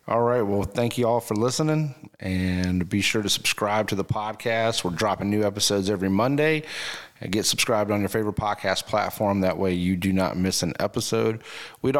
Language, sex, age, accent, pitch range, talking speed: English, male, 30-49, American, 95-110 Hz, 190 wpm